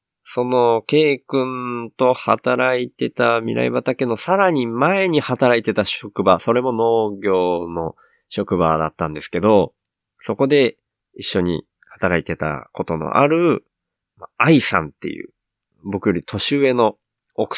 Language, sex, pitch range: Japanese, male, 90-125 Hz